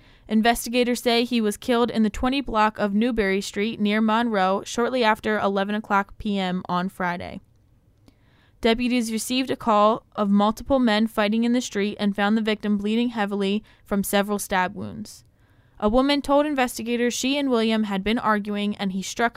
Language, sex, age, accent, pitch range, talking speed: English, female, 10-29, American, 195-235 Hz, 170 wpm